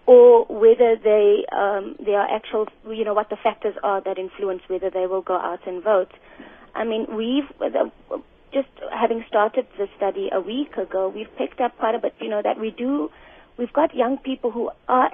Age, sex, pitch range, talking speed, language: 30-49, female, 190-225 Hz, 195 wpm, English